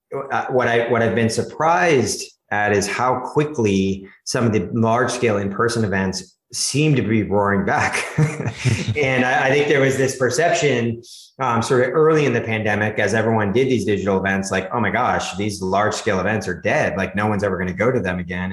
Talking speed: 205 wpm